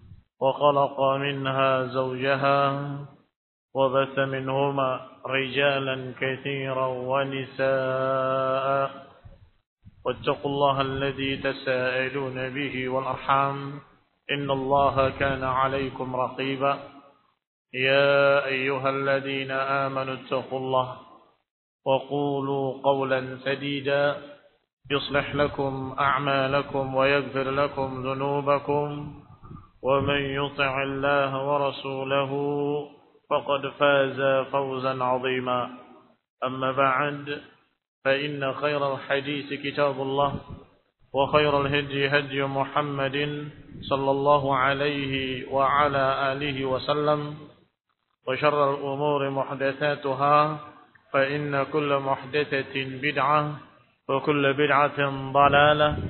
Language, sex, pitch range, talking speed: Indonesian, male, 135-140 Hz, 75 wpm